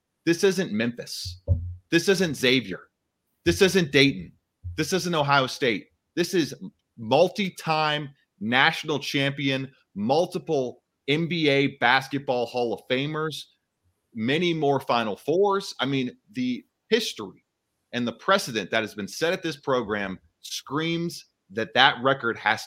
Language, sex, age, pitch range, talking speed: English, male, 30-49, 115-170 Hz, 125 wpm